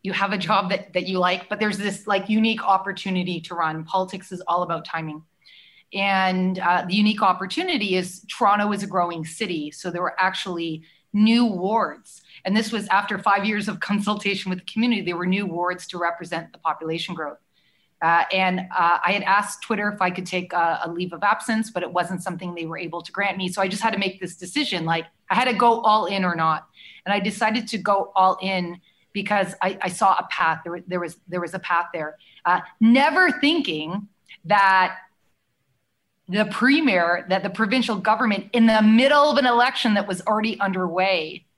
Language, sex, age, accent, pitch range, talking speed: English, female, 30-49, American, 175-210 Hz, 205 wpm